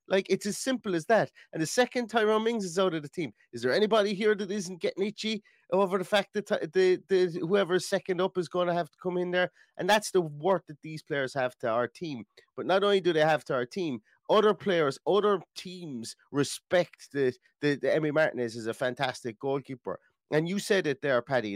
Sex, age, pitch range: male, 30-49, 145-200 Hz